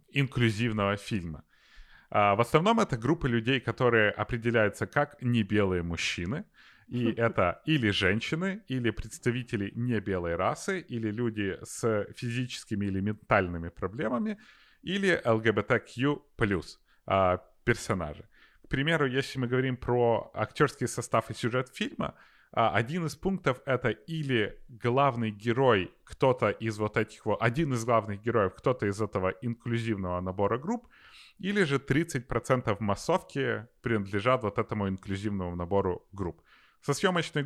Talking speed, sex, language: 120 wpm, male, Ukrainian